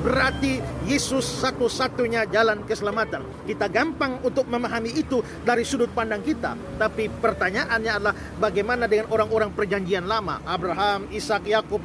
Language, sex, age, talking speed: Indonesian, male, 40-59, 125 wpm